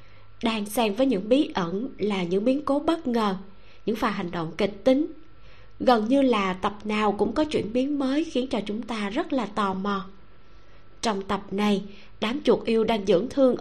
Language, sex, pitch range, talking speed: Vietnamese, female, 195-255 Hz, 200 wpm